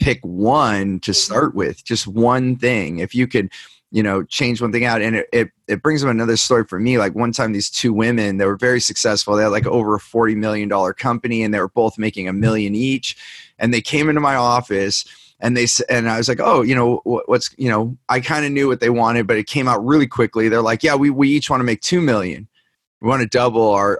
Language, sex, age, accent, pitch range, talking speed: English, male, 30-49, American, 105-125 Hz, 255 wpm